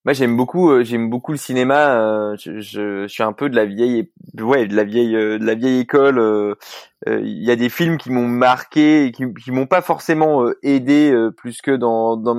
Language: French